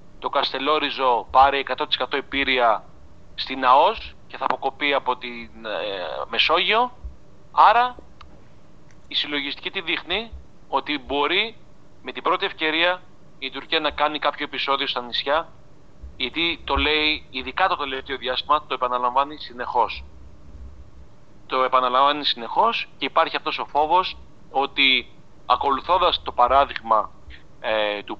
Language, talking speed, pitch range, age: Greek, 125 wpm, 110-145 Hz, 40-59